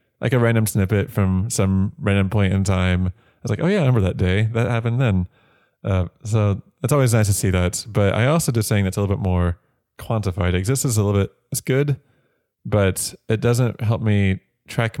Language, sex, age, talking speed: English, male, 20-39, 215 wpm